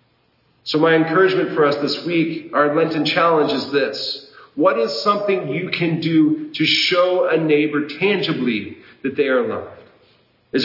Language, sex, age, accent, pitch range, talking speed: English, male, 40-59, American, 145-190 Hz, 160 wpm